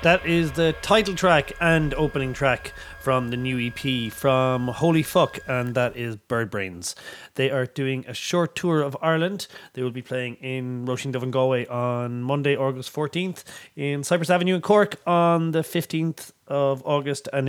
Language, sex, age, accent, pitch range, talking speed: English, male, 30-49, Irish, 110-140 Hz, 180 wpm